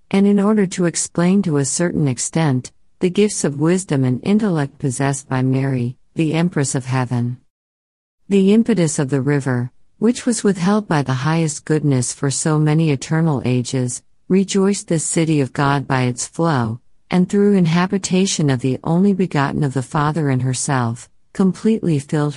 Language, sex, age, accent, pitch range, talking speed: English, female, 50-69, American, 130-175 Hz, 165 wpm